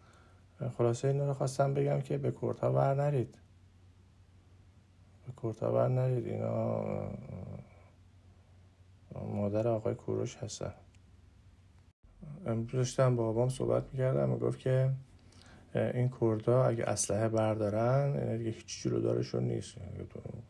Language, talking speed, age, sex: Persian, 100 wpm, 50-69, male